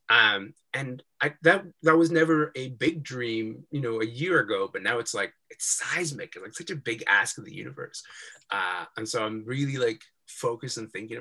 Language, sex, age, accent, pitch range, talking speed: English, male, 20-39, American, 110-170 Hz, 210 wpm